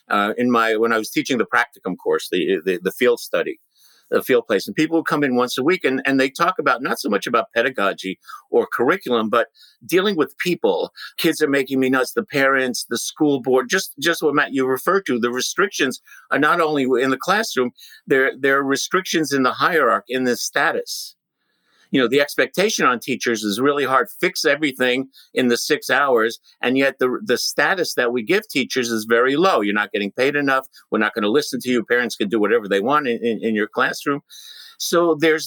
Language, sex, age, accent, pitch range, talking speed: English, male, 50-69, American, 120-170 Hz, 215 wpm